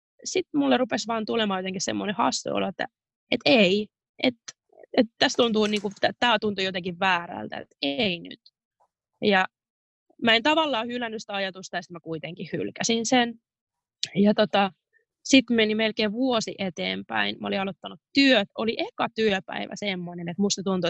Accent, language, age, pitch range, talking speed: native, Finnish, 20-39, 180-230 Hz, 160 wpm